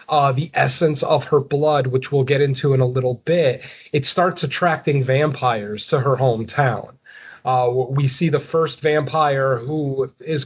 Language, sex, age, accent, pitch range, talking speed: English, male, 30-49, American, 135-160 Hz, 165 wpm